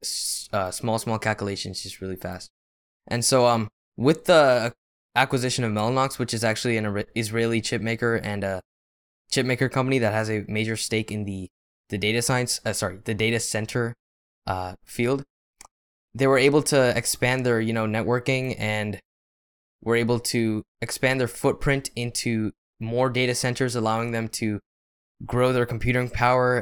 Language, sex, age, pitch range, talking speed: English, male, 10-29, 105-120 Hz, 160 wpm